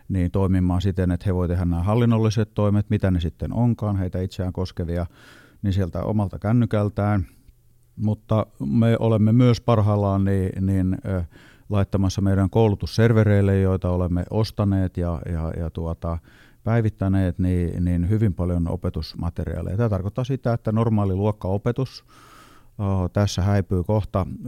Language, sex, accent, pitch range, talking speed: Finnish, male, native, 90-110 Hz, 130 wpm